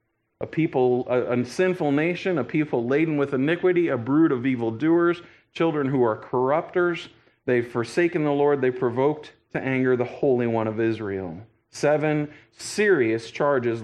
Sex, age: male, 40-59